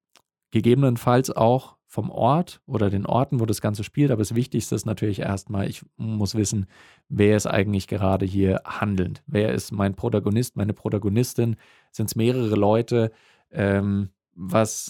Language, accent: German, German